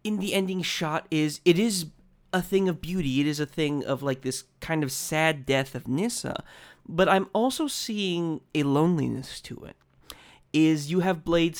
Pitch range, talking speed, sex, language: 135-195 Hz, 185 wpm, male, English